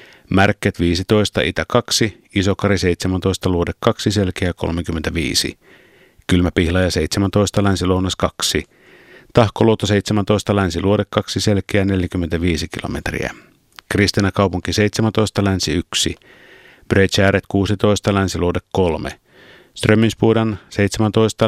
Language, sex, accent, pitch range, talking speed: Finnish, male, native, 90-105 Hz, 85 wpm